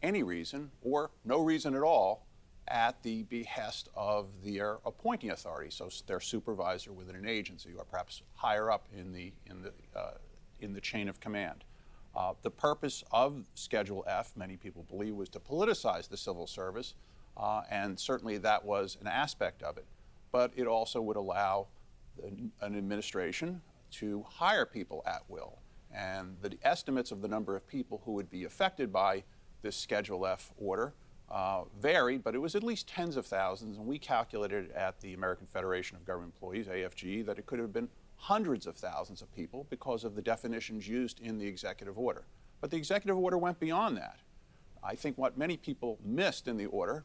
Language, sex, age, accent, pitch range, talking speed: English, male, 50-69, American, 95-130 Hz, 180 wpm